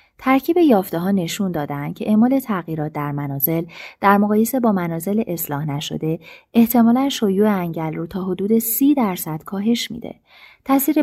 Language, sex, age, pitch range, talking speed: Persian, female, 30-49, 160-225 Hz, 145 wpm